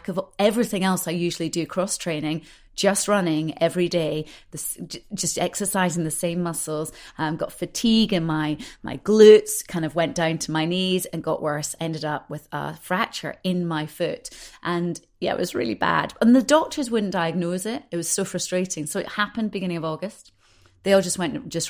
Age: 30-49